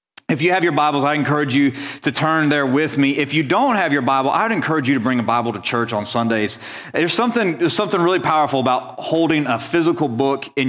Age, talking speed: 30-49, 230 wpm